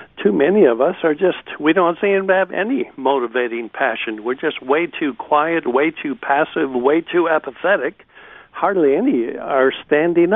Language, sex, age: English, male, 60-79